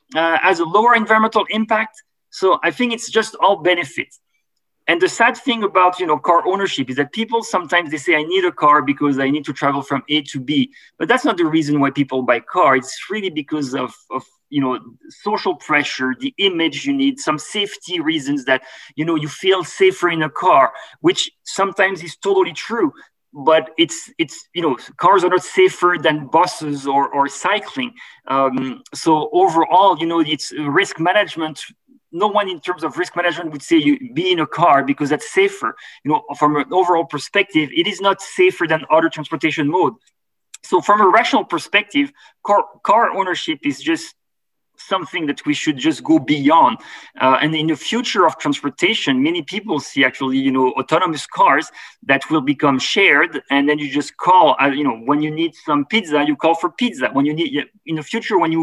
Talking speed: 200 wpm